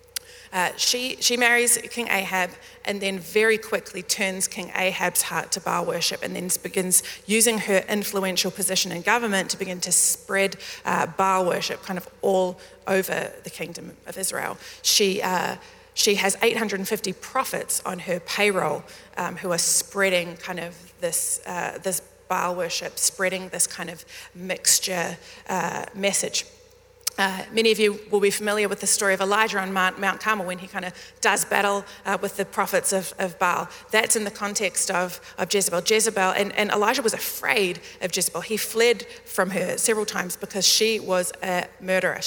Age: 30-49